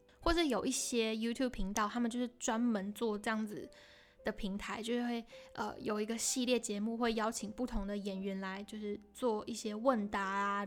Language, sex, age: Chinese, female, 10-29